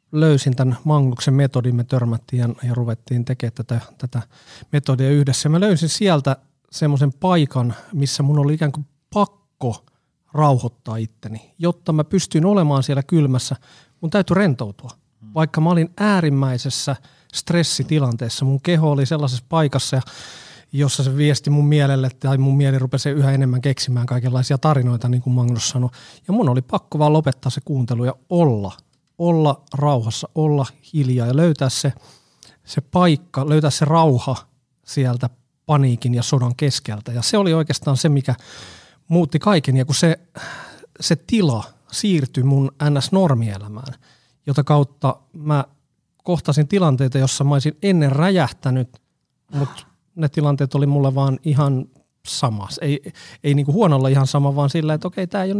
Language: Finnish